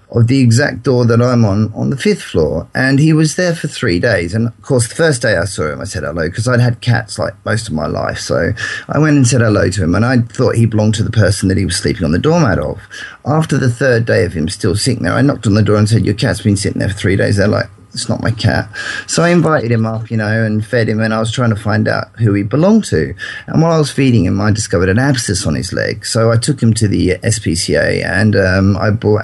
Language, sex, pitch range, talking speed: English, male, 100-125 Hz, 285 wpm